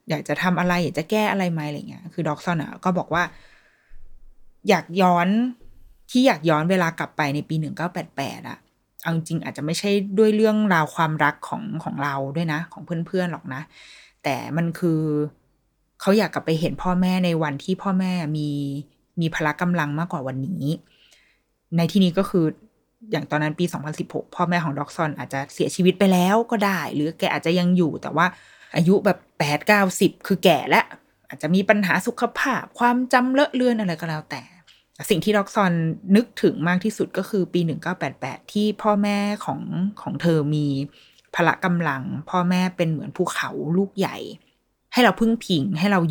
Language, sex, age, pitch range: Thai, female, 20-39, 155-195 Hz